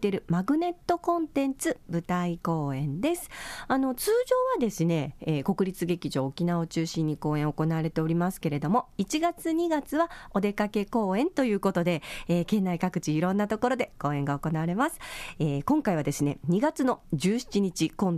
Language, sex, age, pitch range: Japanese, female, 40-59, 160-235 Hz